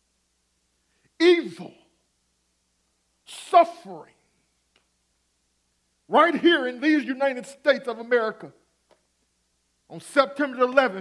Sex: male